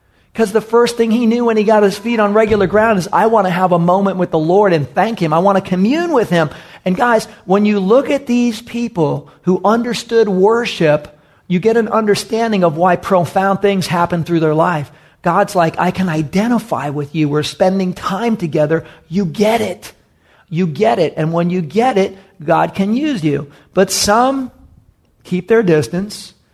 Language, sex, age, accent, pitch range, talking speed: English, male, 40-59, American, 150-200 Hz, 195 wpm